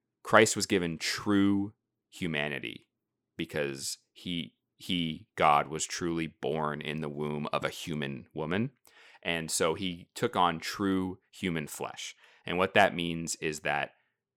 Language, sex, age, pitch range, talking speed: English, male, 30-49, 75-100 Hz, 140 wpm